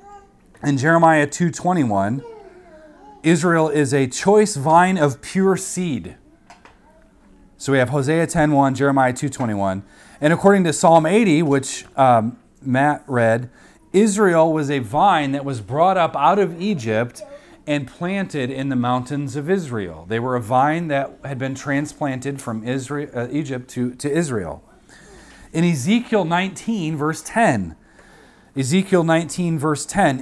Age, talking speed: 30-49, 135 wpm